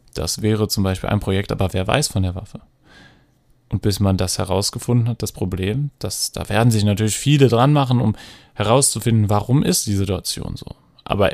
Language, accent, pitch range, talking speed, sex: German, German, 95-125 Hz, 190 wpm, male